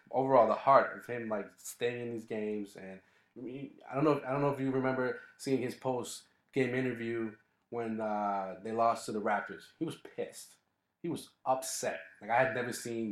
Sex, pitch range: male, 110-135 Hz